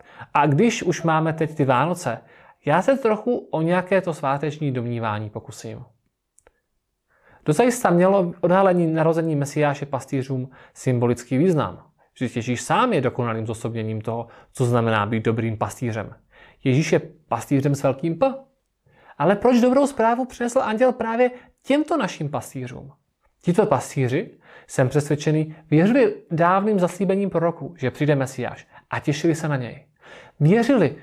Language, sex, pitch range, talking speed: Czech, male, 130-180 Hz, 135 wpm